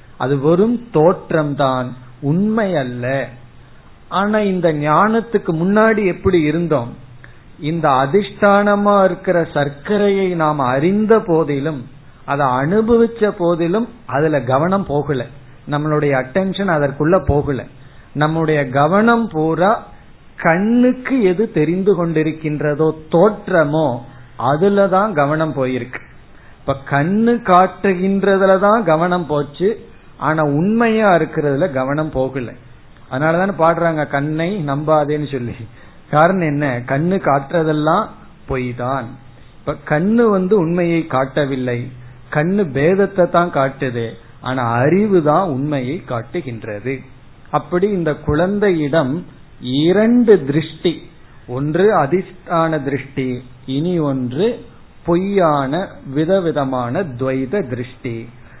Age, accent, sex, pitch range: 50-69, native, male, 135-190 Hz